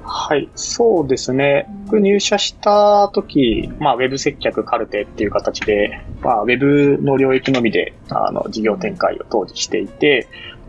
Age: 20-39